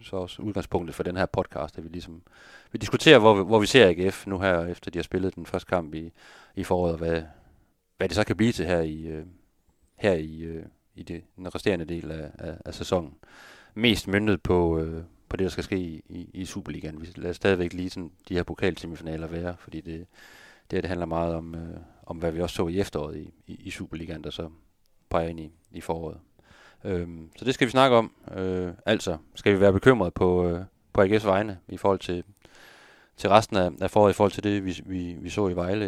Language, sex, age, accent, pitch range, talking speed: Danish, male, 30-49, native, 85-100 Hz, 215 wpm